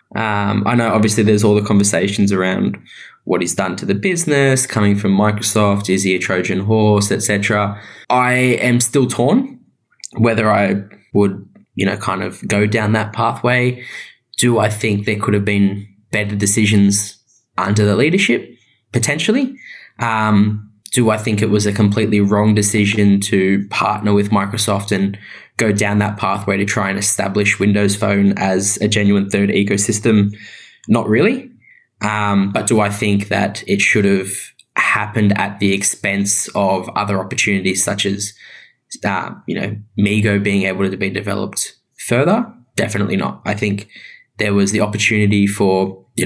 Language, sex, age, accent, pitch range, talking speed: English, male, 10-29, Australian, 100-110 Hz, 160 wpm